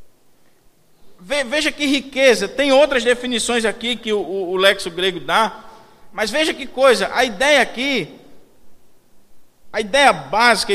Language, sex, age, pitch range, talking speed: Portuguese, male, 50-69, 205-260 Hz, 135 wpm